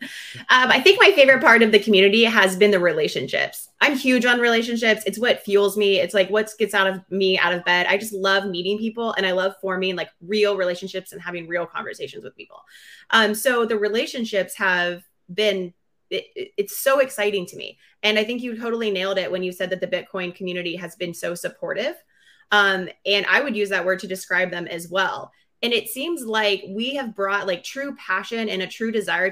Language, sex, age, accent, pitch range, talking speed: English, female, 20-39, American, 185-225 Hz, 215 wpm